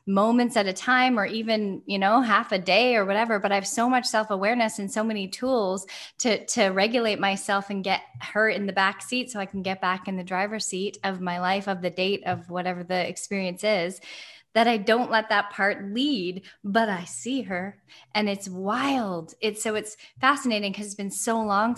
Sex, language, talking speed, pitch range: female, English, 210 wpm, 185-220 Hz